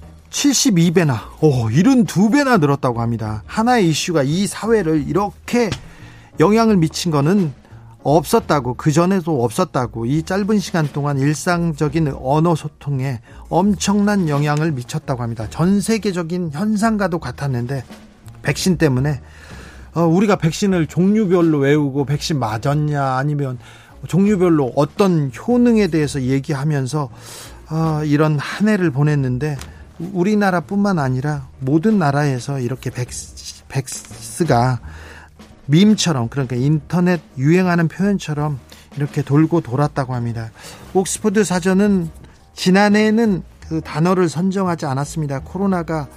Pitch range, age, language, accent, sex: 135-180 Hz, 40-59, Korean, native, male